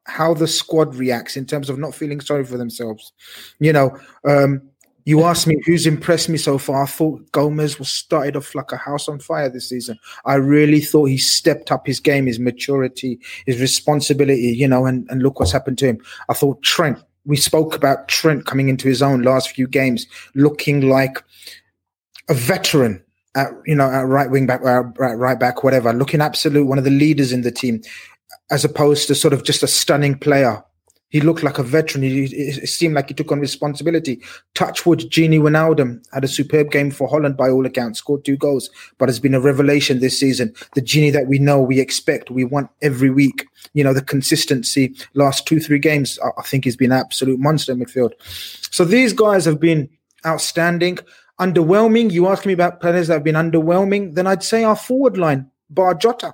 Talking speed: 200 wpm